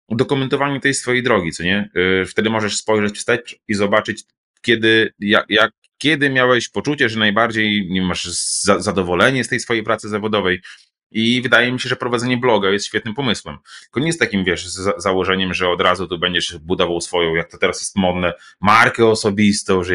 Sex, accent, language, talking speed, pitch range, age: male, native, Polish, 175 wpm, 95-110 Hz, 20-39